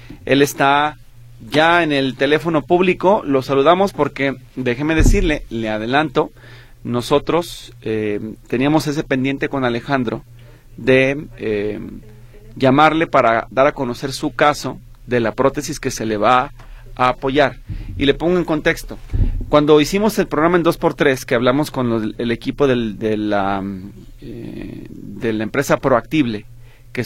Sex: male